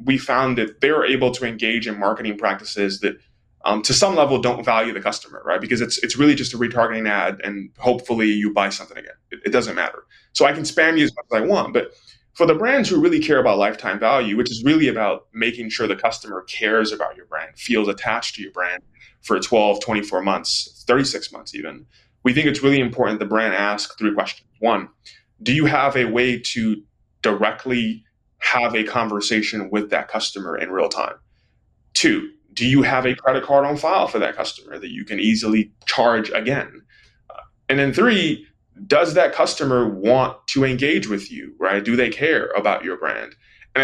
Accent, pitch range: American, 110-140 Hz